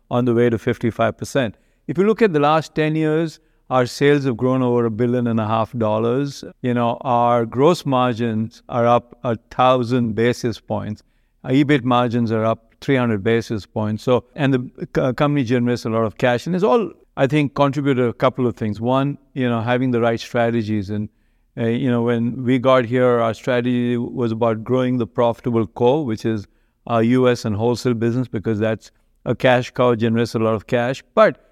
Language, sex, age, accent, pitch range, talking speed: English, male, 50-69, Indian, 115-135 Hz, 200 wpm